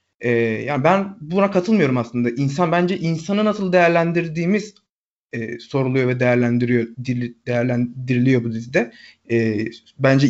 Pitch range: 125-175 Hz